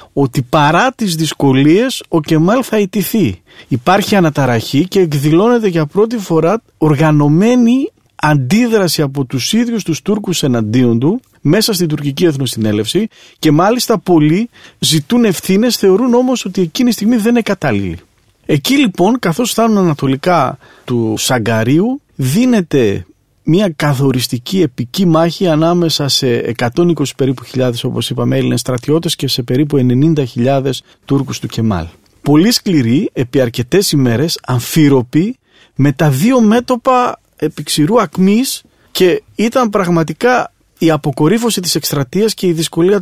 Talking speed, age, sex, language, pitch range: 130 wpm, 40-59, male, Greek, 135-200 Hz